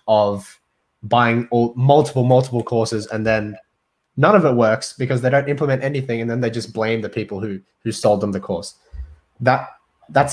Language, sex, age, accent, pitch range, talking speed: English, male, 20-39, Australian, 110-130 Hz, 185 wpm